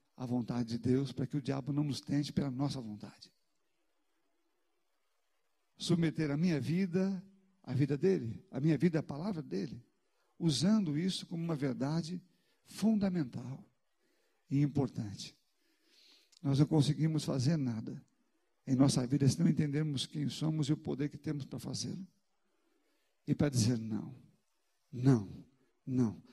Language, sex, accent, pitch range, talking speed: Portuguese, male, Brazilian, 135-180 Hz, 140 wpm